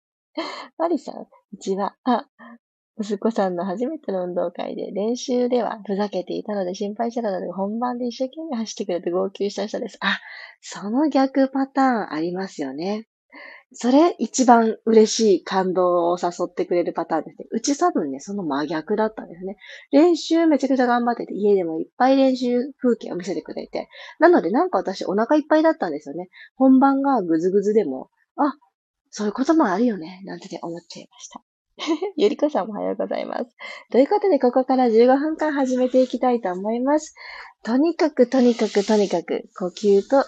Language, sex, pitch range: Japanese, female, 190-265 Hz